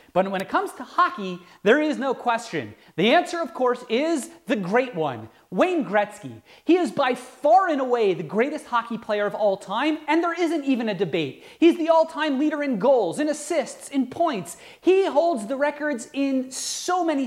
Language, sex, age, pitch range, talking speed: English, male, 30-49, 230-310 Hz, 195 wpm